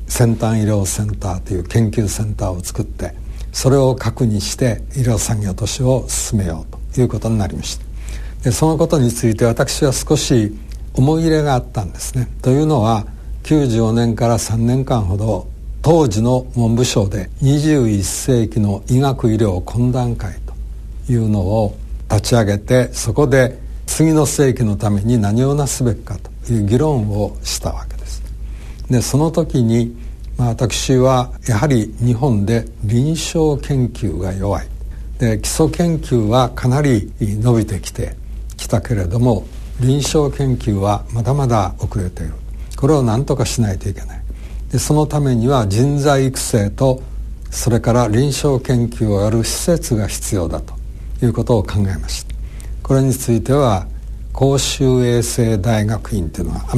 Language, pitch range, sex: Japanese, 100-130 Hz, male